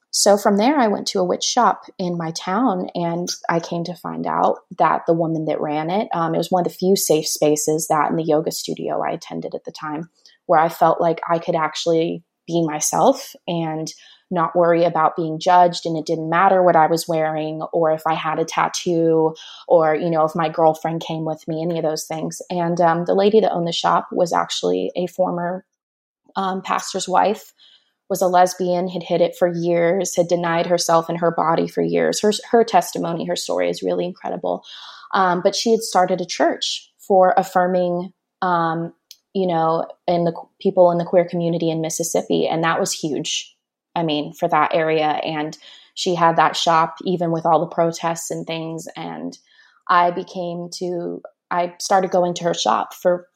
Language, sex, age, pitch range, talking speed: English, female, 20-39, 160-180 Hz, 200 wpm